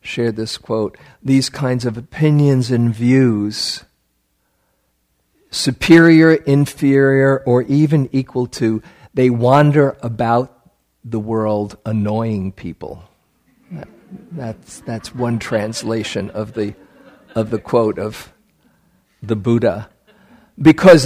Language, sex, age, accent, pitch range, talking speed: English, male, 50-69, American, 105-135 Hz, 100 wpm